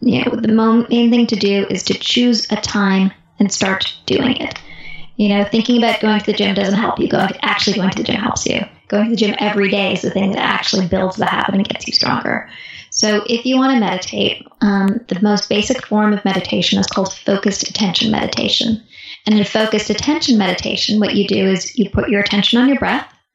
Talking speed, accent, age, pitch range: 225 wpm, American, 10-29, 195-225 Hz